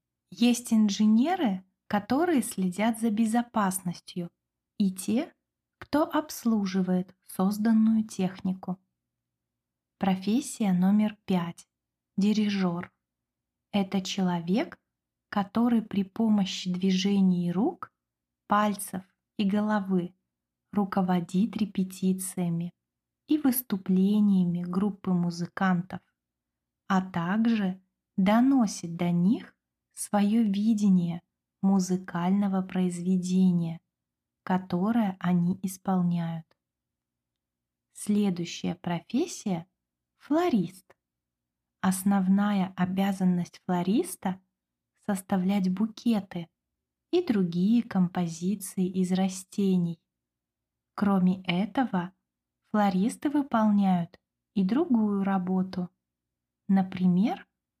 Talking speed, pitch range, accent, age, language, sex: 70 wpm, 175-210 Hz, native, 20-39, Russian, female